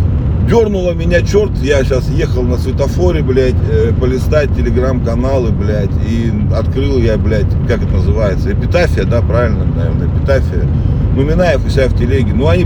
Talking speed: 155 wpm